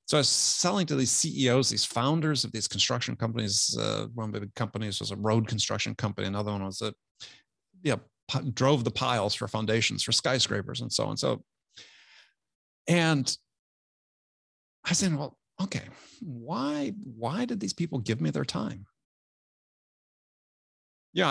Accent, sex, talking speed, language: American, male, 150 wpm, English